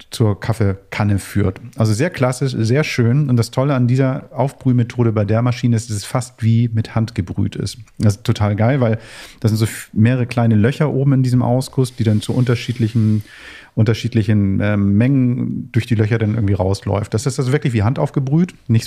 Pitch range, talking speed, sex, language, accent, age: 105-130 Hz, 195 wpm, male, German, German, 40-59